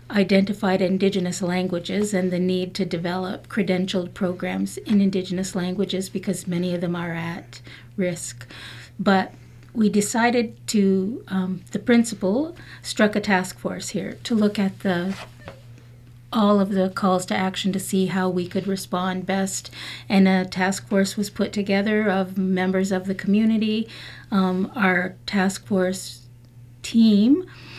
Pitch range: 180-210 Hz